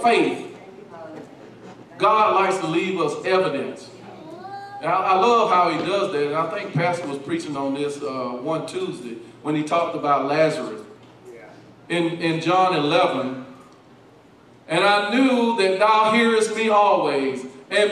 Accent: American